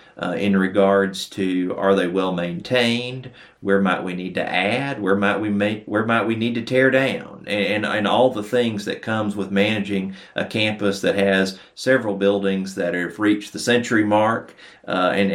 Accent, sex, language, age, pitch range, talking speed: American, male, English, 40-59, 95-110 Hz, 190 wpm